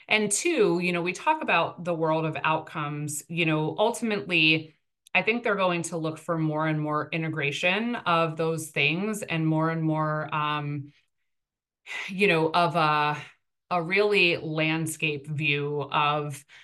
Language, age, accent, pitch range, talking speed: English, 20-39, American, 145-165 Hz, 150 wpm